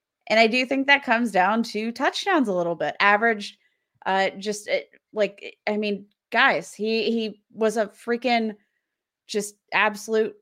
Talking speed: 150 wpm